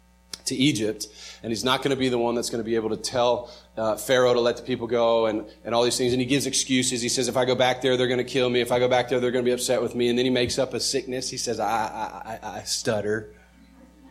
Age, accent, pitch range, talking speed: 30-49, American, 95-135 Hz, 300 wpm